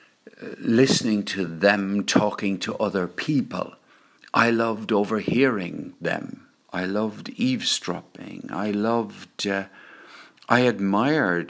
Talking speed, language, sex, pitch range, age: 100 wpm, English, male, 80-105 Hz, 60-79